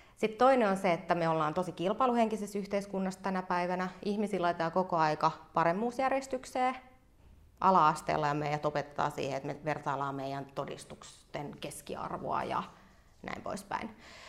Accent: native